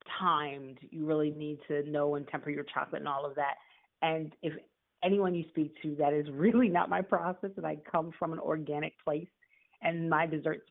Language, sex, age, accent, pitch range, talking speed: English, female, 30-49, American, 155-195 Hz, 200 wpm